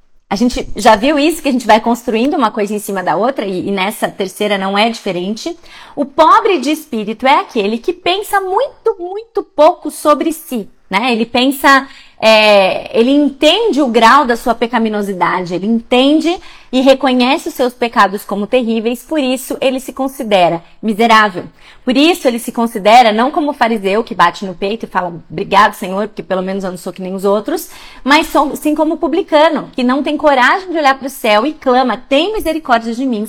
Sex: female